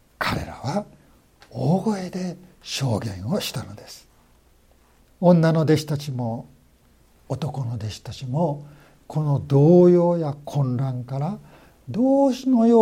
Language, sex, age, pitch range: Japanese, male, 60-79, 135-180 Hz